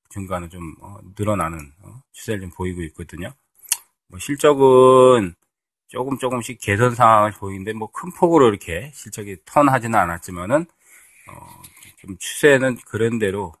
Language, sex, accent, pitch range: Korean, male, native, 85-115 Hz